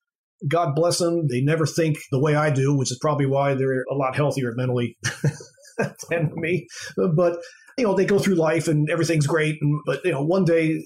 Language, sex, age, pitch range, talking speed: English, male, 40-59, 130-165 Hz, 200 wpm